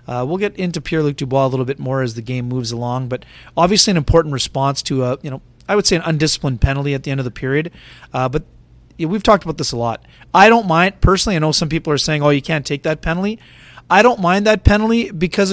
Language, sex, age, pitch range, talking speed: English, male, 30-49, 145-220 Hz, 250 wpm